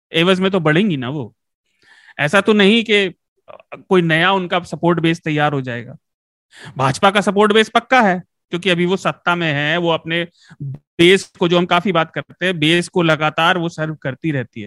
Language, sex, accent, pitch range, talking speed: Hindi, male, native, 160-215 Hz, 135 wpm